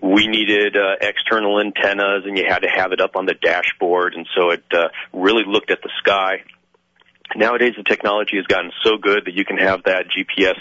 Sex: male